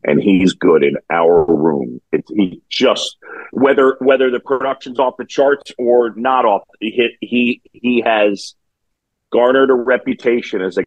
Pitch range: 105-130 Hz